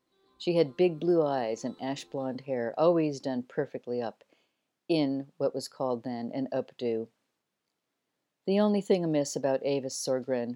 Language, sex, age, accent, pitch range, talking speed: English, female, 50-69, American, 130-160 Hz, 150 wpm